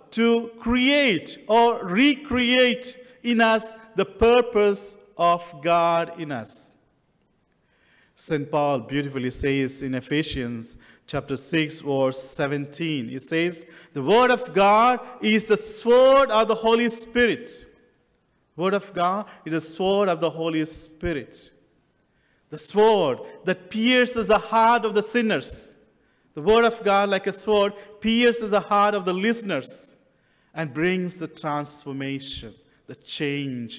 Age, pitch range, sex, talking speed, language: 40-59, 165-230 Hz, male, 130 wpm, English